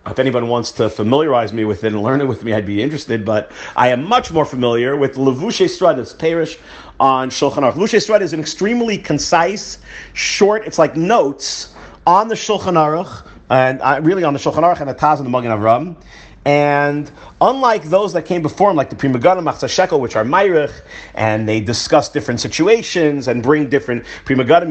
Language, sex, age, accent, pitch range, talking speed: English, male, 40-59, American, 135-195 Hz, 195 wpm